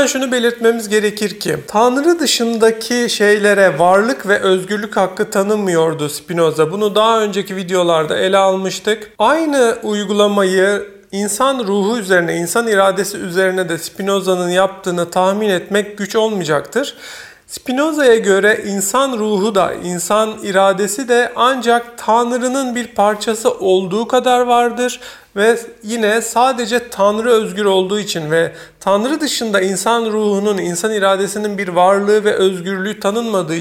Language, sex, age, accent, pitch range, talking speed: Turkish, male, 40-59, native, 190-230 Hz, 120 wpm